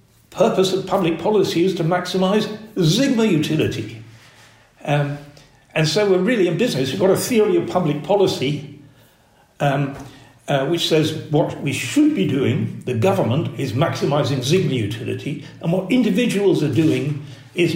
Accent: British